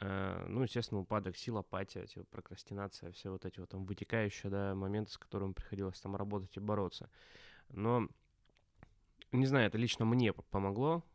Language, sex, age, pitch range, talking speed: Russian, male, 20-39, 95-115 Hz, 160 wpm